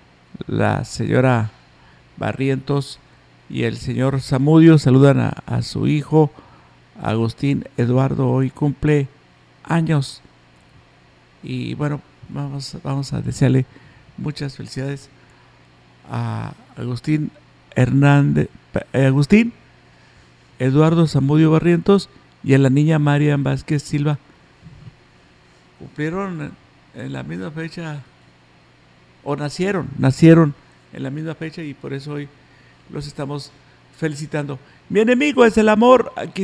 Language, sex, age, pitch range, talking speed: Spanish, male, 50-69, 125-175 Hz, 105 wpm